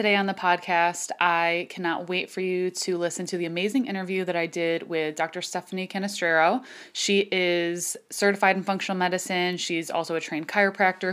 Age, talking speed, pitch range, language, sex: 20-39, 180 wpm, 160-185 Hz, English, female